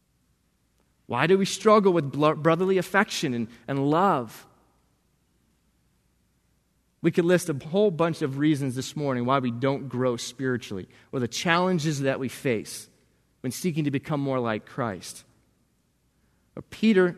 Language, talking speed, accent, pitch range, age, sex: English, 135 wpm, American, 120-175 Hz, 30-49, male